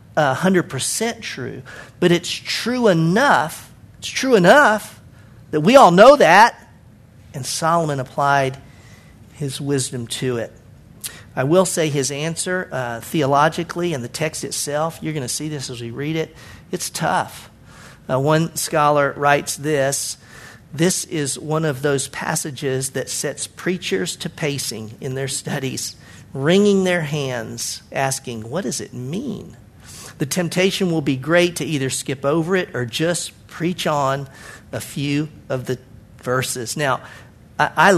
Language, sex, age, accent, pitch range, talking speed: English, male, 50-69, American, 130-160 Hz, 145 wpm